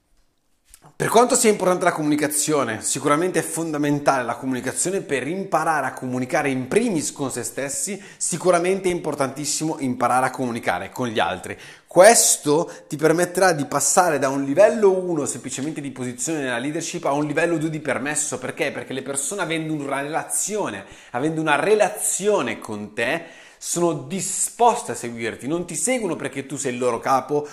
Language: Italian